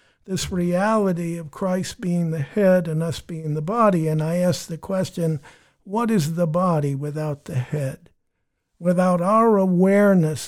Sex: male